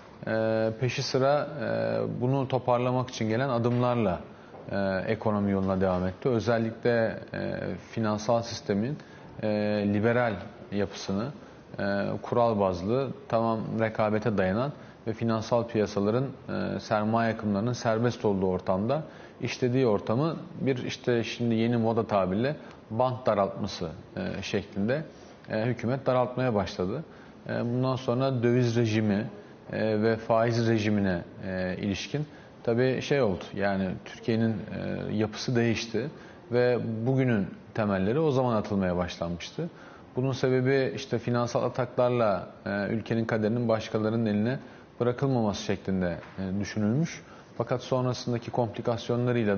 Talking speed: 110 wpm